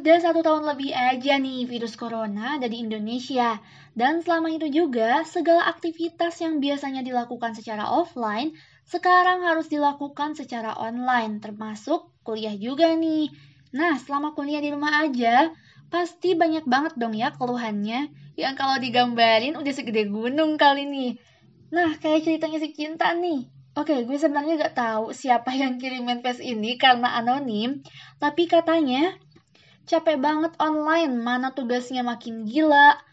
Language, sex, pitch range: Indonesian, female, 240-310 Hz